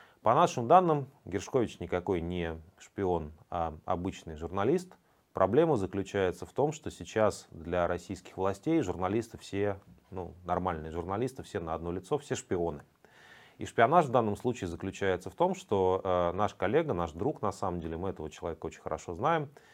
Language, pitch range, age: Russian, 85-110 Hz, 30-49